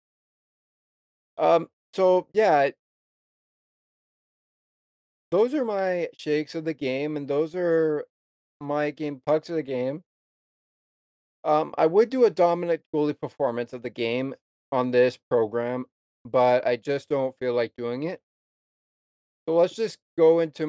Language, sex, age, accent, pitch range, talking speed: English, male, 30-49, American, 120-150 Hz, 135 wpm